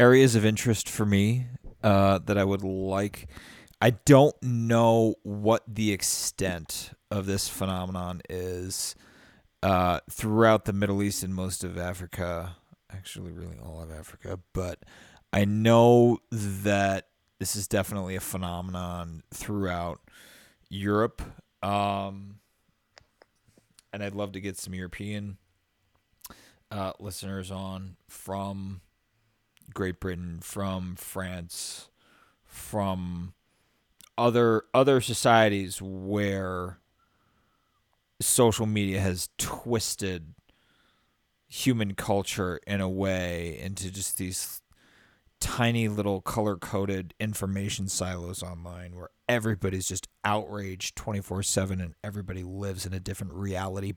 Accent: American